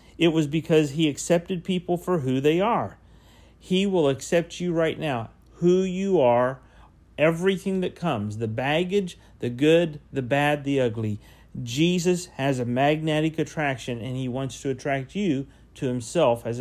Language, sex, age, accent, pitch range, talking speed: English, male, 40-59, American, 120-165 Hz, 160 wpm